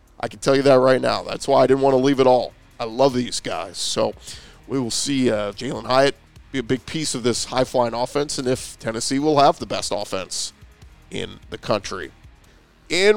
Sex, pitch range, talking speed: male, 120-155 Hz, 215 wpm